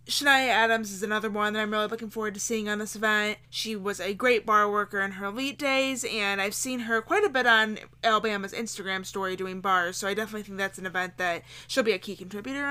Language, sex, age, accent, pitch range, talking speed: English, female, 20-39, American, 195-235 Hz, 240 wpm